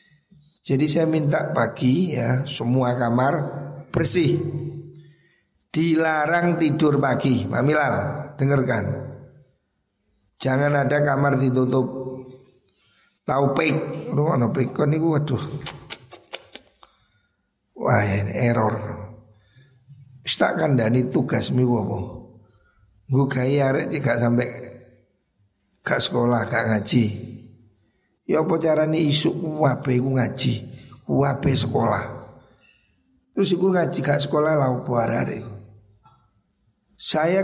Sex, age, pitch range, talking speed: male, 60-79, 120-150 Hz, 95 wpm